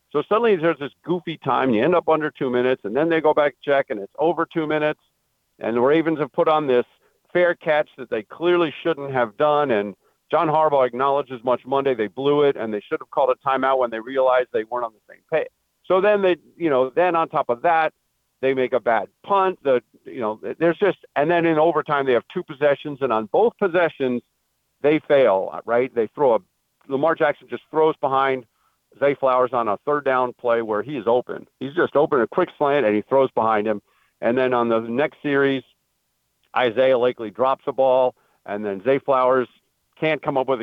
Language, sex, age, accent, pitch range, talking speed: English, male, 50-69, American, 125-155 Hz, 220 wpm